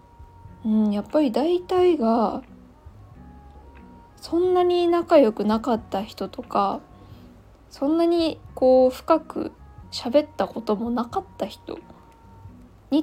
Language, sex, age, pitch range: Japanese, female, 20-39, 210-295 Hz